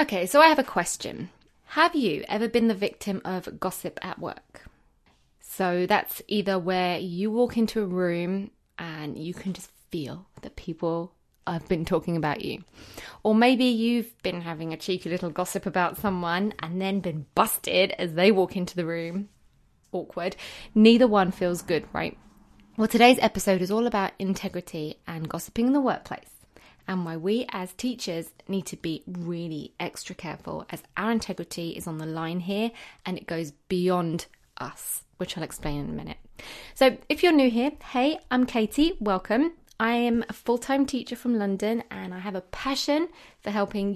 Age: 20-39